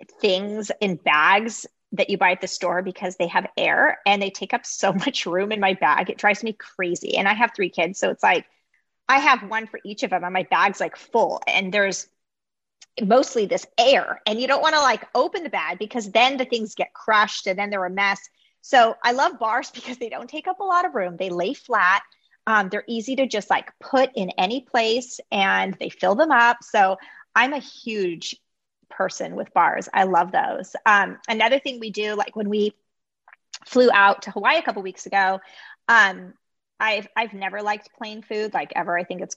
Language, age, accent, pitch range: English, 30-49, American, 190-240 Hz